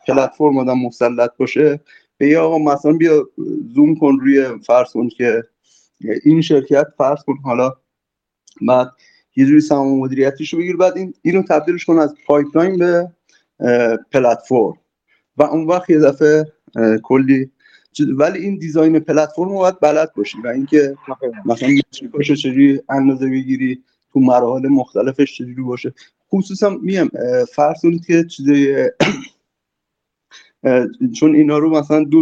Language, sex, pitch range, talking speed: Persian, male, 130-160 Hz, 125 wpm